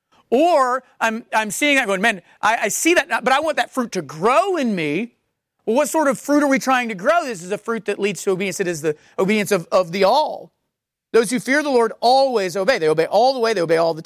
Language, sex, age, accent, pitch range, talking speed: English, male, 40-59, American, 155-235 Hz, 265 wpm